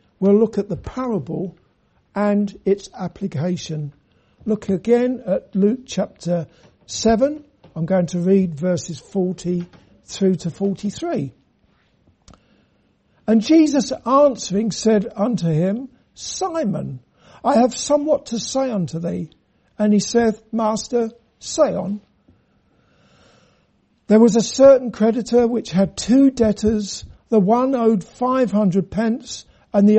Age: 60-79